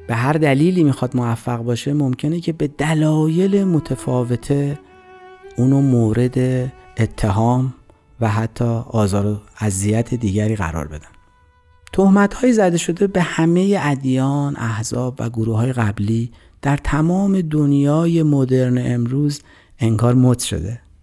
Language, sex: Persian, male